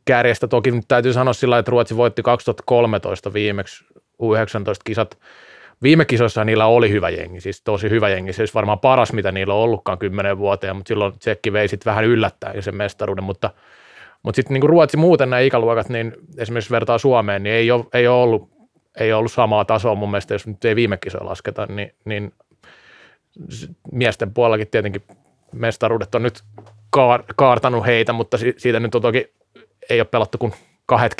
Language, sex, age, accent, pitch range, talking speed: Finnish, male, 30-49, native, 105-125 Hz, 165 wpm